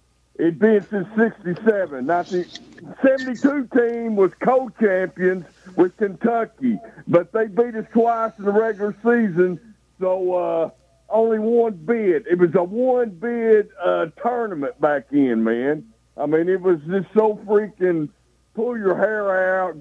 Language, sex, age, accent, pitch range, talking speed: English, male, 60-79, American, 155-215 Hz, 140 wpm